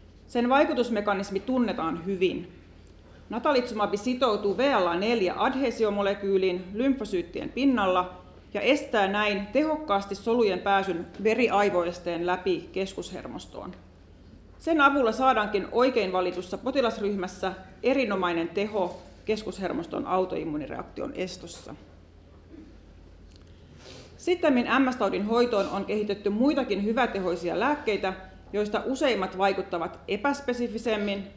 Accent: native